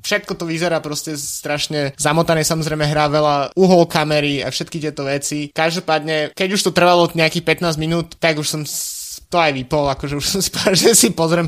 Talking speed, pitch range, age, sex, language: 180 wpm, 140-160 Hz, 20-39, male, Slovak